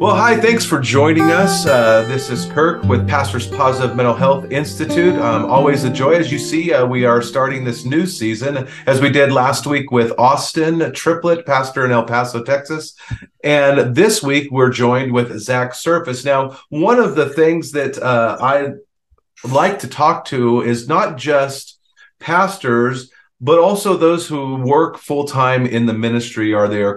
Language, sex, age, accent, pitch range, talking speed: English, male, 40-59, American, 120-145 Hz, 175 wpm